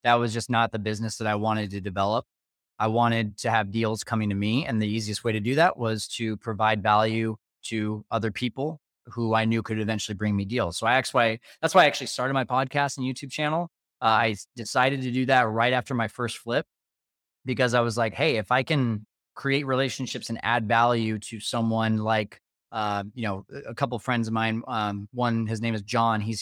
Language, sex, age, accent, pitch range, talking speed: English, male, 20-39, American, 110-125 Hz, 220 wpm